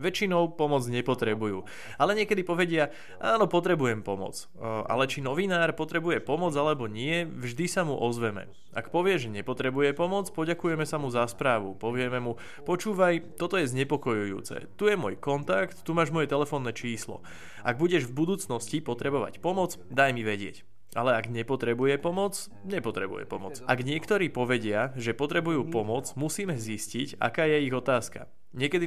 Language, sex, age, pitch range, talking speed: Slovak, male, 20-39, 120-170 Hz, 150 wpm